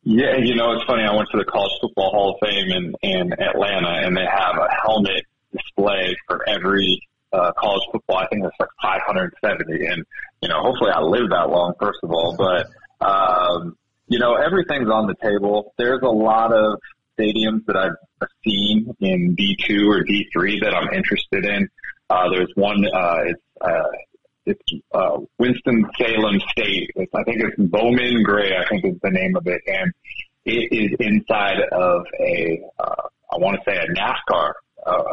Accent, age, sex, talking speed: American, 30-49, male, 180 wpm